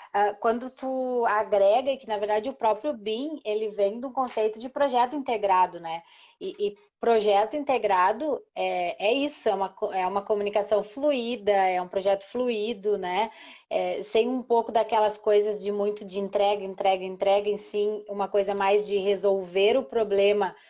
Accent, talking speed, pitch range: Brazilian, 160 wpm, 200-245 Hz